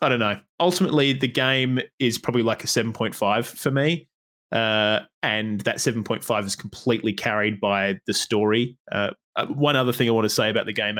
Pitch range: 105-140 Hz